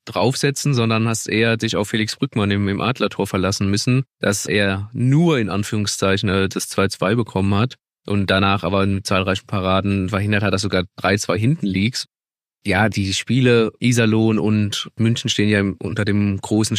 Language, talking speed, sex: German, 160 wpm, male